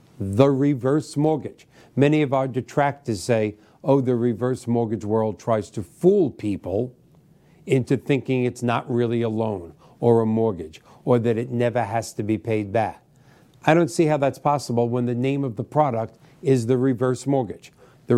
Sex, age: male, 50-69